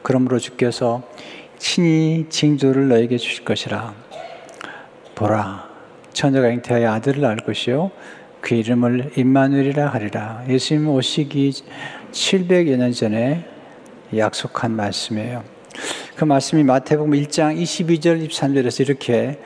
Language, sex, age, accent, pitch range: Korean, male, 60-79, native, 115-140 Hz